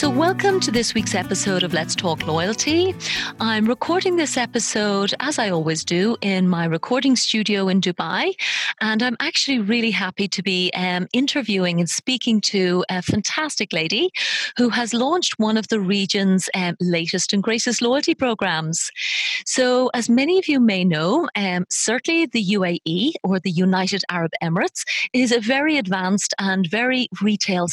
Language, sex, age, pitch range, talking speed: English, female, 30-49, 185-250 Hz, 160 wpm